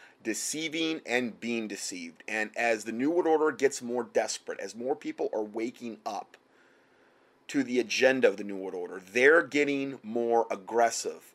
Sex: male